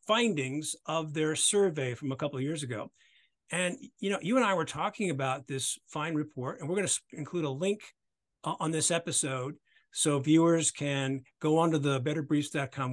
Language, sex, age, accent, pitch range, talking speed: English, male, 50-69, American, 145-205 Hz, 185 wpm